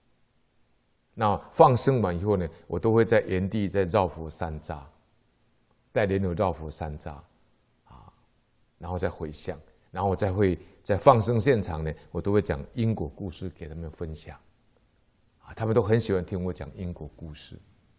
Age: 60-79